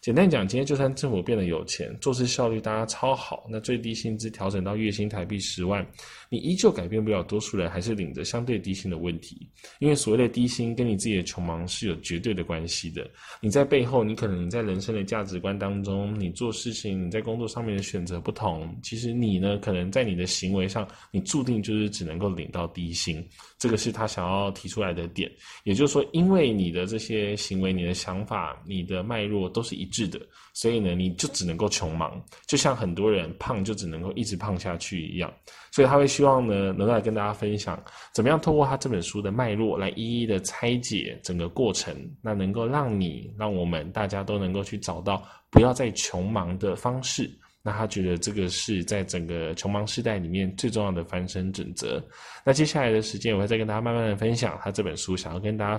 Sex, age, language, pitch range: male, 20-39, Chinese, 95-115 Hz